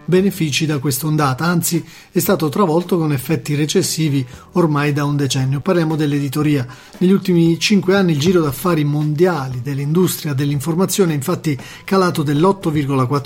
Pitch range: 140-175 Hz